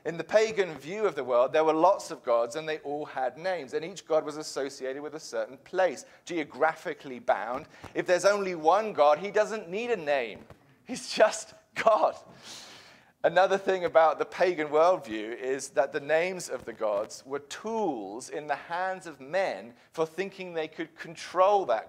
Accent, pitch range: British, 130-185 Hz